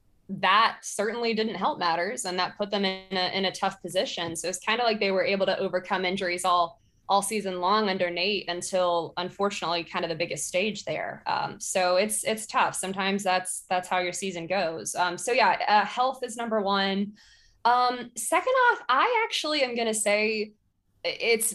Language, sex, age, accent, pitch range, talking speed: English, female, 20-39, American, 180-215 Hz, 190 wpm